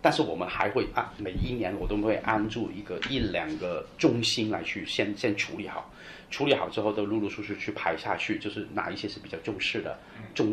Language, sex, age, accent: Chinese, male, 30-49, native